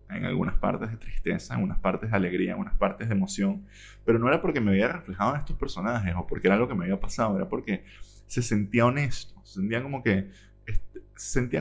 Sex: male